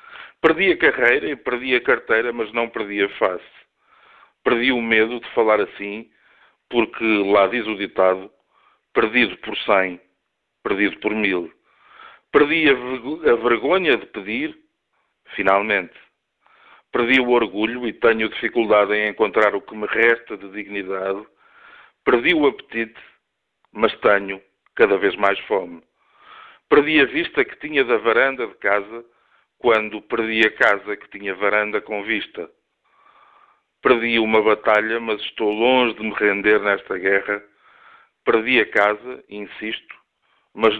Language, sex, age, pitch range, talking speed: Portuguese, male, 50-69, 105-170 Hz, 135 wpm